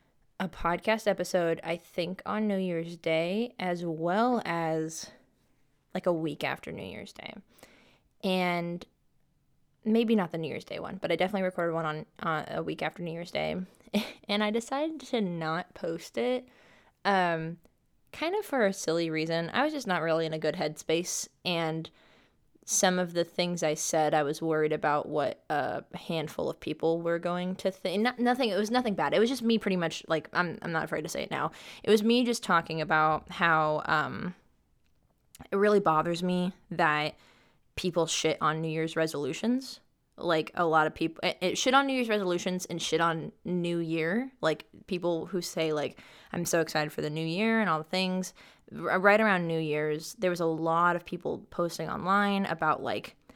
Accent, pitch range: American, 160-210 Hz